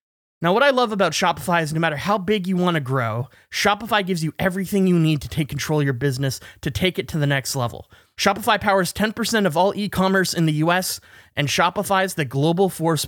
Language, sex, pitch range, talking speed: English, male, 140-195 Hz, 225 wpm